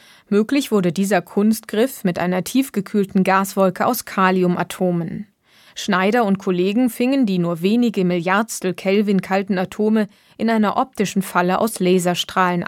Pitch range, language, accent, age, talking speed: 180-215 Hz, German, German, 20-39, 130 wpm